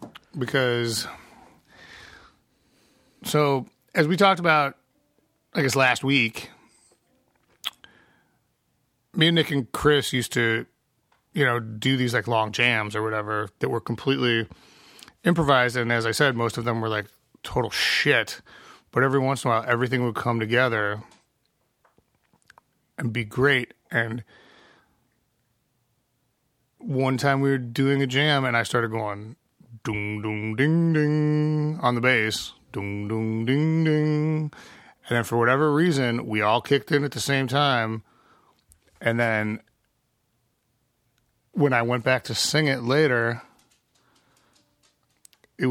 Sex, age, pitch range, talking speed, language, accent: male, 30-49, 115-140 Hz, 135 wpm, English, American